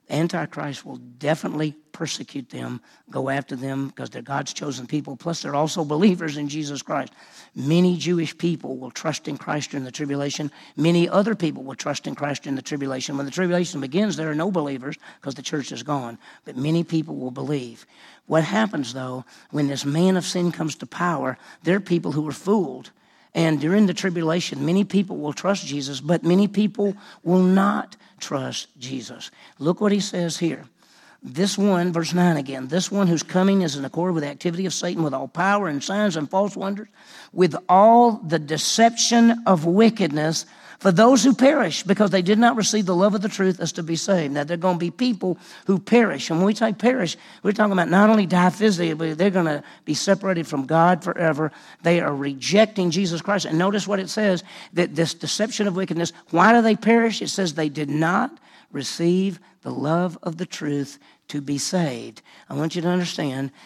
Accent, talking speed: American, 200 wpm